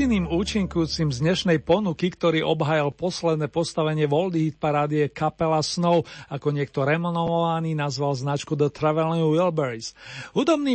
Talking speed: 115 wpm